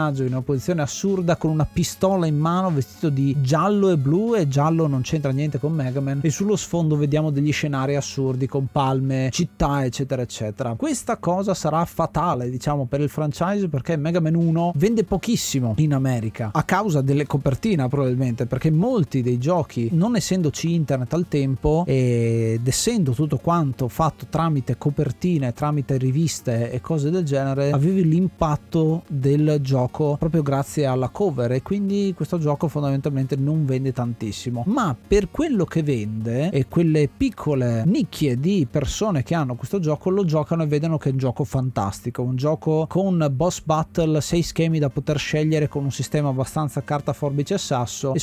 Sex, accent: male, native